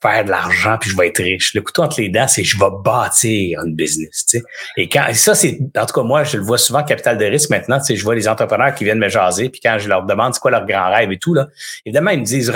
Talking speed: 310 wpm